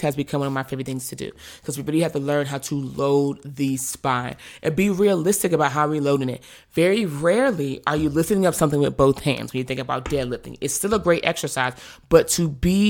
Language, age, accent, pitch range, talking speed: English, 20-39, American, 140-165 Hz, 235 wpm